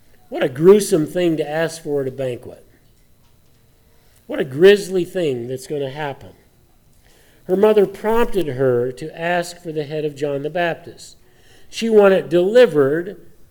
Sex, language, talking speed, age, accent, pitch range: male, English, 155 wpm, 50-69, American, 140-185 Hz